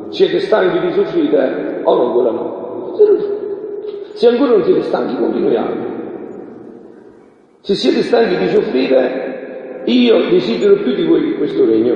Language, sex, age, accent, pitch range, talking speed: Italian, male, 50-69, native, 350-405 Hz, 135 wpm